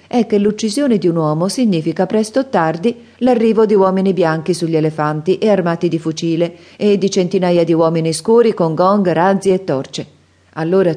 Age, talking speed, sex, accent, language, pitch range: 40-59, 175 wpm, female, native, Italian, 150-190 Hz